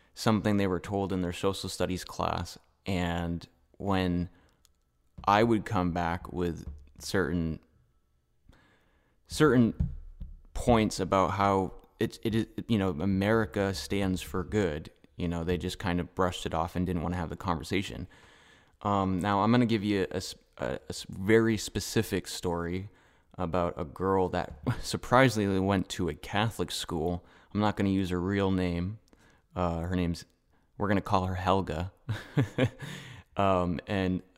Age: 20-39